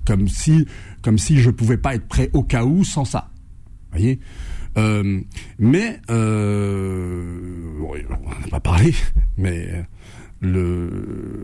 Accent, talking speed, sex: French, 135 wpm, male